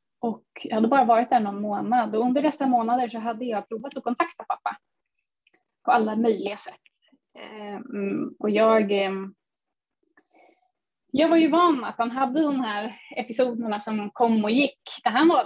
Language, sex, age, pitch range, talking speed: Swedish, female, 20-39, 215-275 Hz, 170 wpm